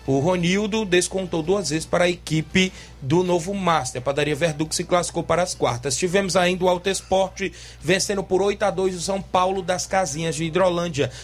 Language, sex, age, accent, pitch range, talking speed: Portuguese, male, 20-39, Brazilian, 160-190 Hz, 190 wpm